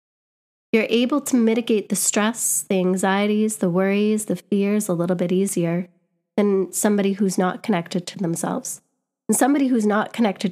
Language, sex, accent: English, female, American